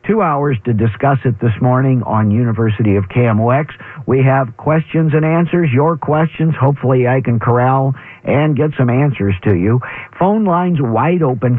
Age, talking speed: 50-69, 165 wpm